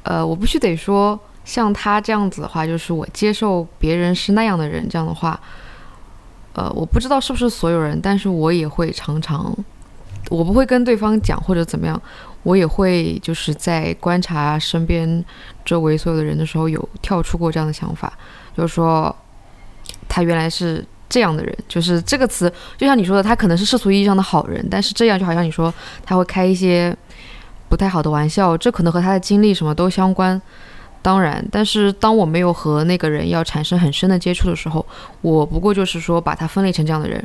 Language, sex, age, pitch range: Chinese, female, 20-39, 160-195 Hz